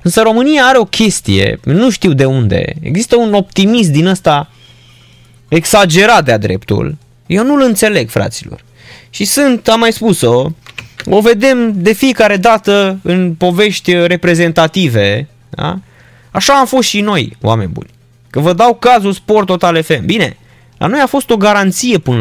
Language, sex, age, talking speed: Romanian, male, 20-39, 155 wpm